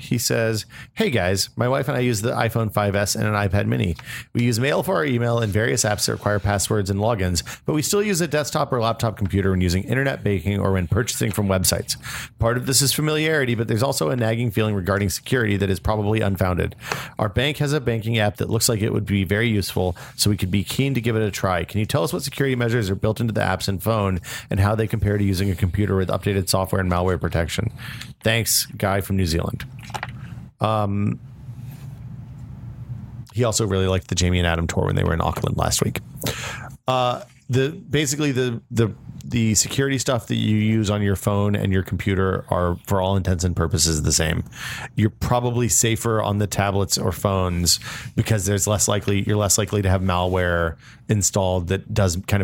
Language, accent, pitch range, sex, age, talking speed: English, American, 95-120 Hz, male, 40-59, 215 wpm